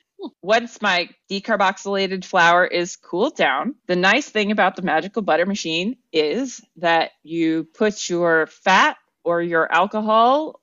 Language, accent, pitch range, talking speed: English, American, 175-220 Hz, 135 wpm